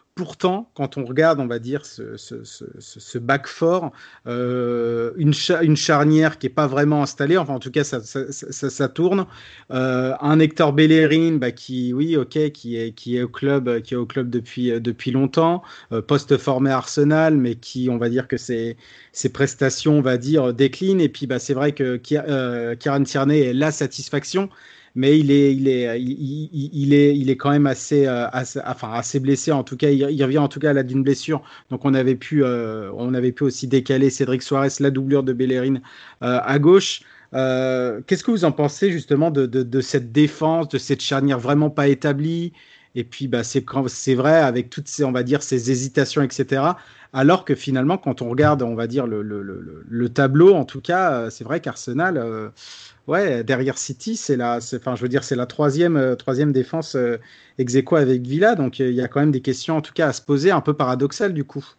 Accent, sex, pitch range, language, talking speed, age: French, male, 125-150 Hz, French, 220 wpm, 40-59